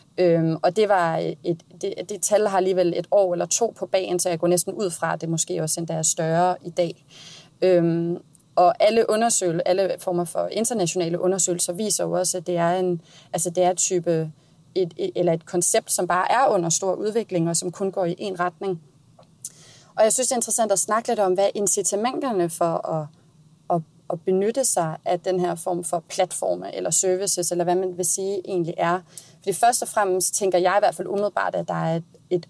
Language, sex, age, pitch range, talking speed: Danish, female, 30-49, 170-195 Hz, 215 wpm